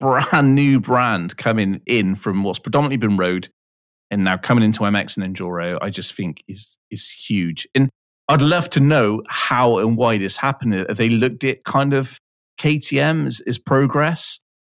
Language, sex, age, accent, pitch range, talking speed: English, male, 30-49, British, 100-130 Hz, 165 wpm